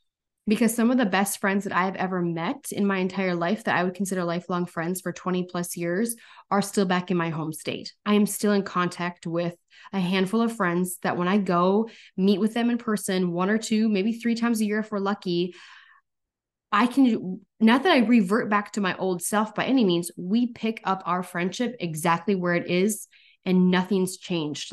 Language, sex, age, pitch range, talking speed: English, female, 20-39, 180-220 Hz, 210 wpm